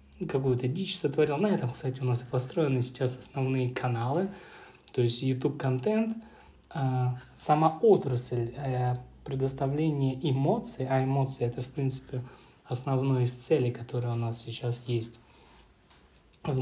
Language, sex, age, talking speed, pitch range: Russian, male, 20-39, 125 wpm, 125-150 Hz